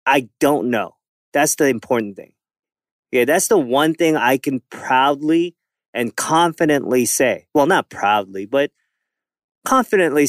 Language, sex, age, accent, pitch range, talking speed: English, male, 30-49, American, 135-205 Hz, 135 wpm